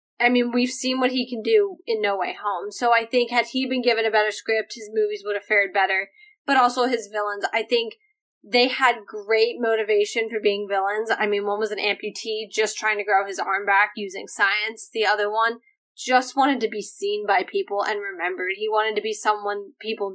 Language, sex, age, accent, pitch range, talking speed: English, female, 10-29, American, 220-280 Hz, 220 wpm